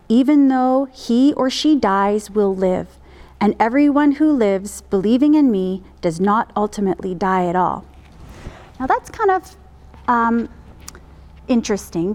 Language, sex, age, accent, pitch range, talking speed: English, female, 30-49, American, 185-260 Hz, 135 wpm